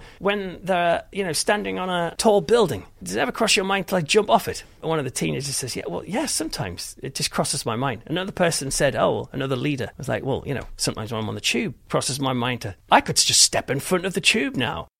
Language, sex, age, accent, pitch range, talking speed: English, male, 30-49, British, 115-175 Hz, 270 wpm